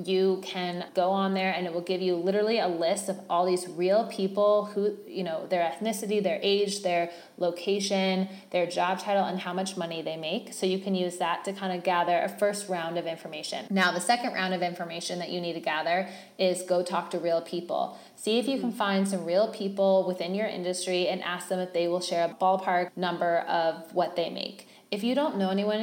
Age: 20-39